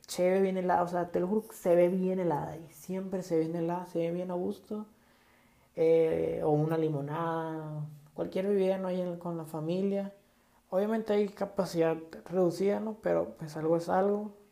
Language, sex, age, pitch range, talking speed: Spanish, male, 20-39, 160-200 Hz, 175 wpm